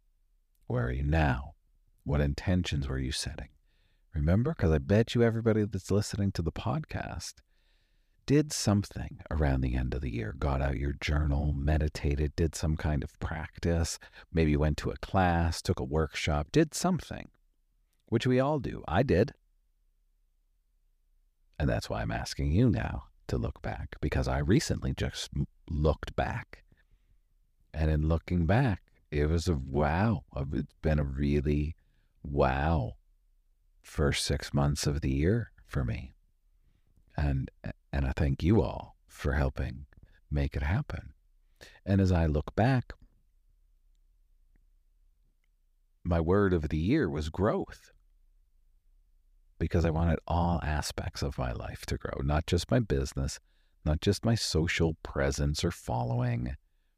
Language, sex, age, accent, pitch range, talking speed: English, male, 50-69, American, 70-90 Hz, 140 wpm